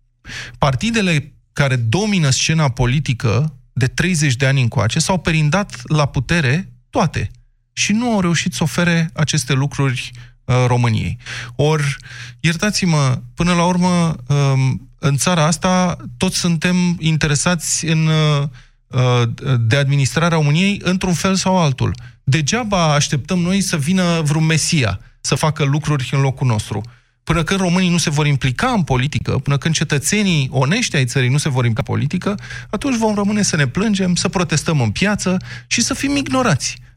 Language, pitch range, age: Romanian, 130-180 Hz, 20-39